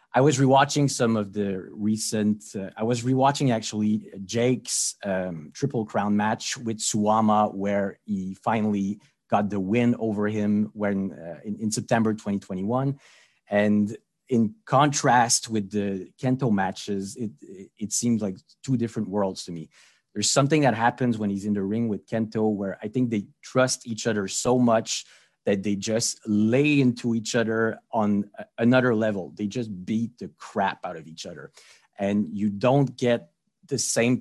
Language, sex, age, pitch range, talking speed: English, male, 30-49, 100-120 Hz, 165 wpm